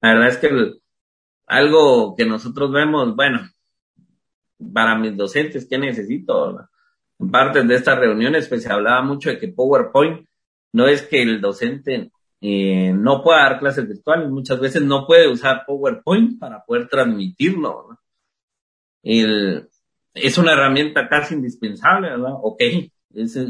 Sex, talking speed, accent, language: male, 145 wpm, Mexican, Spanish